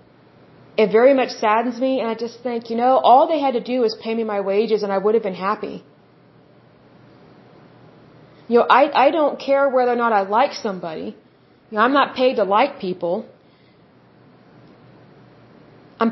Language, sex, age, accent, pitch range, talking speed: English, female, 30-49, American, 215-265 Hz, 180 wpm